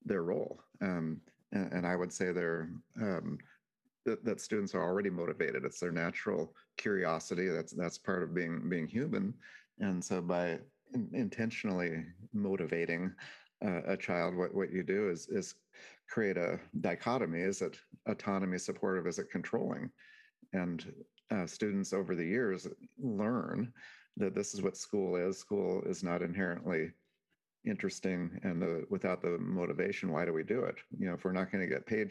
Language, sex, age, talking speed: English, male, 40-59, 165 wpm